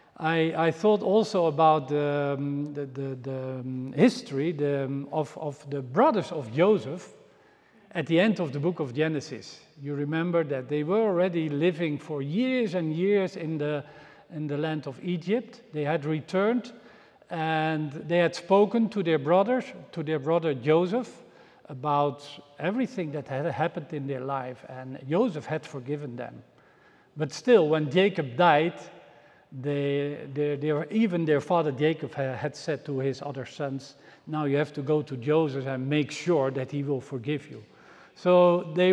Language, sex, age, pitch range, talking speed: English, male, 50-69, 145-190 Hz, 155 wpm